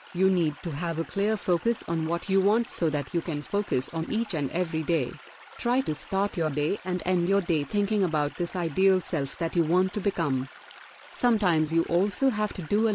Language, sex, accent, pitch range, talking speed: Hindi, female, native, 165-205 Hz, 220 wpm